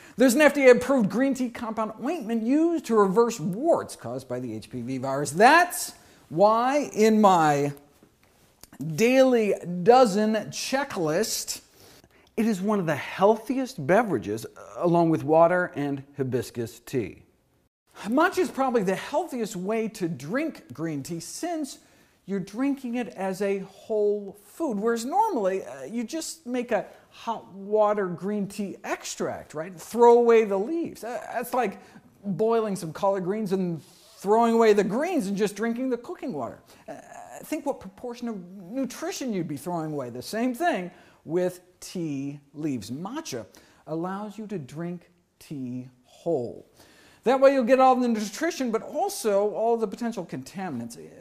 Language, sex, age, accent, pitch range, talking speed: English, male, 50-69, American, 175-250 Hz, 145 wpm